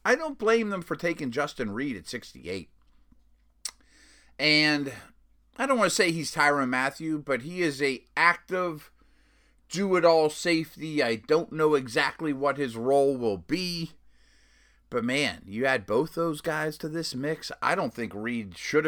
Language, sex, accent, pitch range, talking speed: English, male, American, 100-155 Hz, 160 wpm